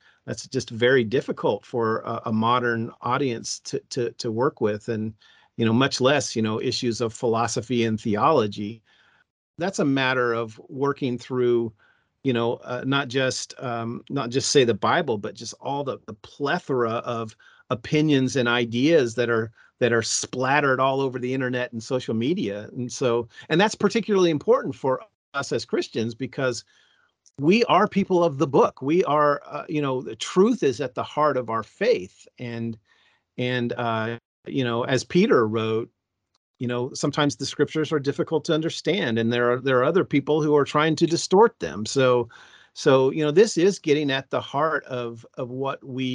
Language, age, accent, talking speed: English, 40-59, American, 180 wpm